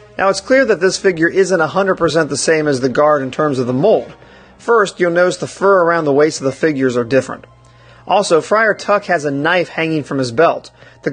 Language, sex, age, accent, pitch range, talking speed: English, male, 30-49, American, 145-195 Hz, 225 wpm